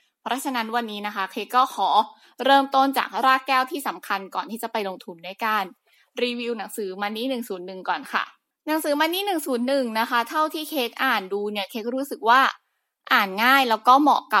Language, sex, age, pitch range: Thai, female, 20-39, 200-265 Hz